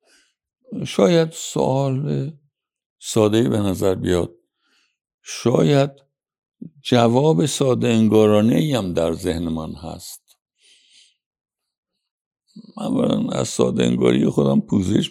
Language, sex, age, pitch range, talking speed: Persian, male, 60-79, 90-135 Hz, 85 wpm